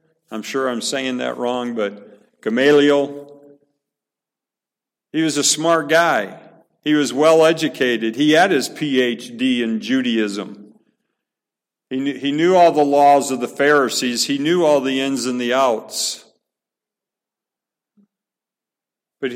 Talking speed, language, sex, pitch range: 125 wpm, English, male, 140-180 Hz